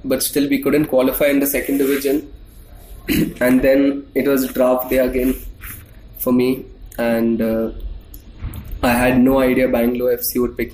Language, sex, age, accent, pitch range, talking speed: English, male, 20-39, Indian, 115-135 Hz, 155 wpm